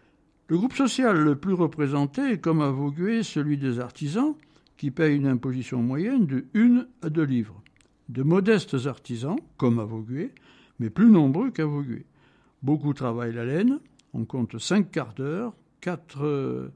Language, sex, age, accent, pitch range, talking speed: French, male, 60-79, French, 130-170 Hz, 145 wpm